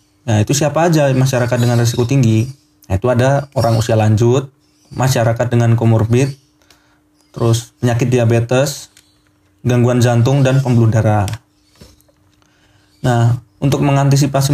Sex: male